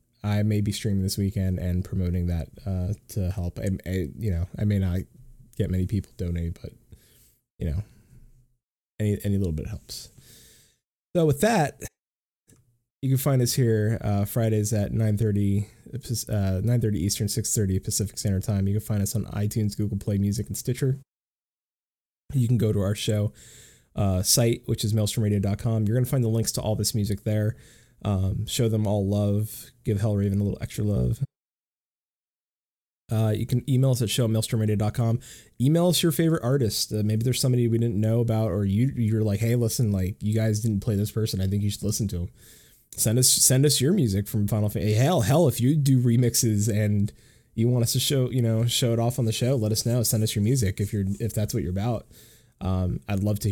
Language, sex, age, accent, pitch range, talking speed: English, male, 20-39, American, 100-120 Hz, 205 wpm